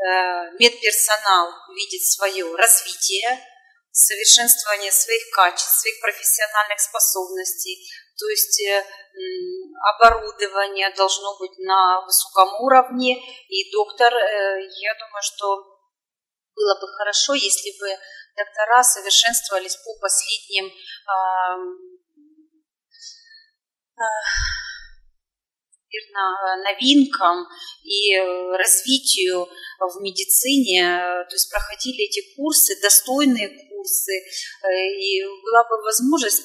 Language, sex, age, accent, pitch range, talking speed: Russian, female, 30-49, native, 195-290 Hz, 80 wpm